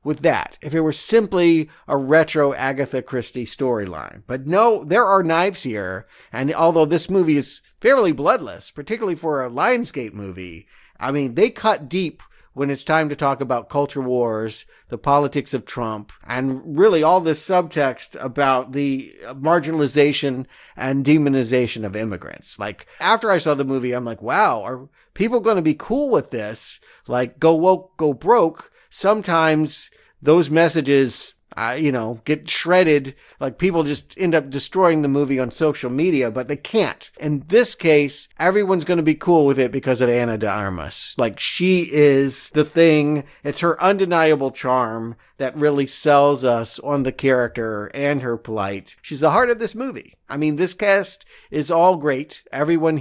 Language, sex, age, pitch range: English, male, 50-69, 130-165 Hz